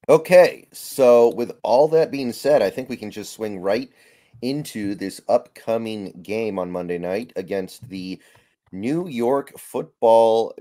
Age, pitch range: 30-49, 95-145 Hz